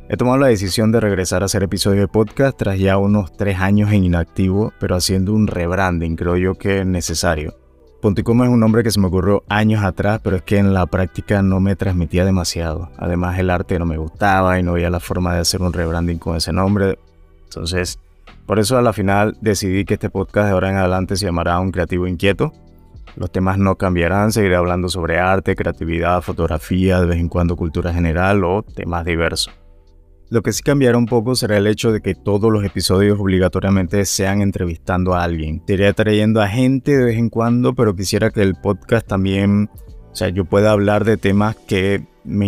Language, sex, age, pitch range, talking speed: Spanish, male, 20-39, 90-105 Hz, 205 wpm